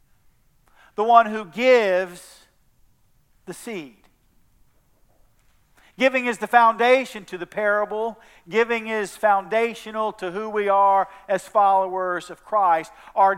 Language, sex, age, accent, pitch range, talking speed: English, male, 50-69, American, 165-210 Hz, 110 wpm